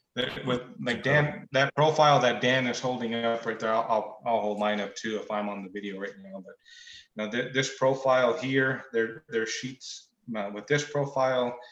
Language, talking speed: English, 190 wpm